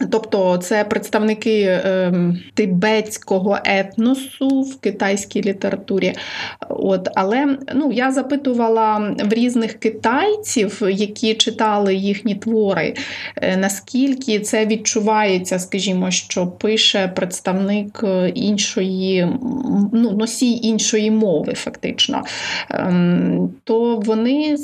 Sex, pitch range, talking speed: female, 200-230 Hz, 95 wpm